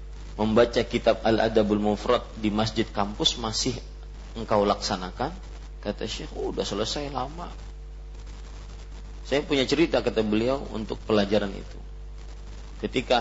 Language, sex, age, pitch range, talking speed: Malay, male, 40-59, 90-125 Hz, 120 wpm